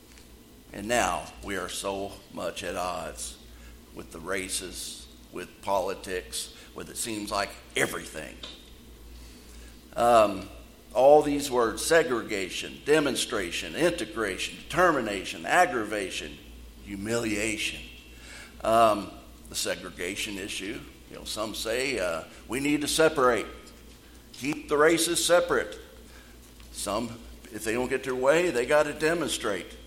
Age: 50-69